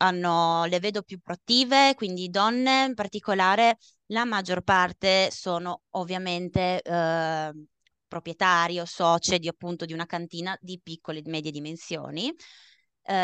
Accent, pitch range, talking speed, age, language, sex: native, 170-205 Hz, 120 wpm, 20-39, Italian, female